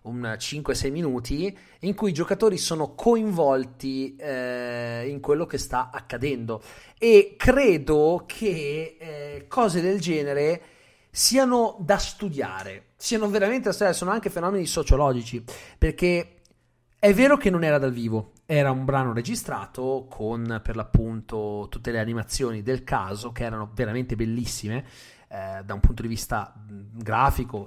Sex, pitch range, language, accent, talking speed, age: male, 120-180 Hz, Italian, native, 135 wpm, 30-49